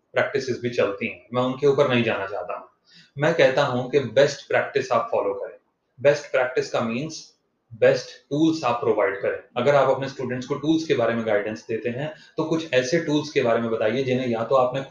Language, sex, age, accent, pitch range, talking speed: Hindi, male, 30-49, native, 125-160 Hz, 65 wpm